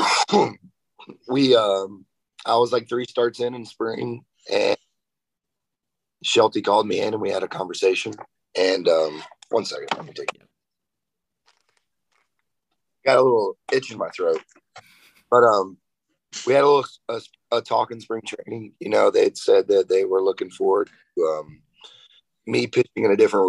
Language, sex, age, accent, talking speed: English, male, 30-49, American, 165 wpm